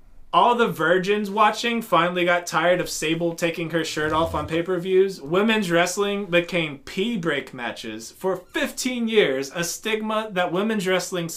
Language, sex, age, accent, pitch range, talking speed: English, male, 20-39, American, 155-205 Hz, 150 wpm